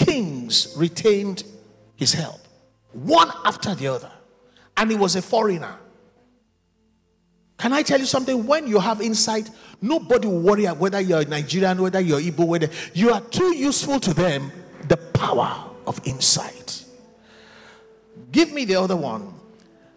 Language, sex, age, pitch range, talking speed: English, male, 50-69, 165-255 Hz, 140 wpm